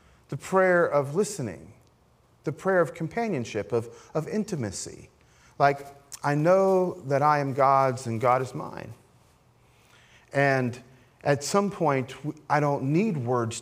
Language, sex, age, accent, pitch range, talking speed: English, male, 40-59, American, 125-175 Hz, 130 wpm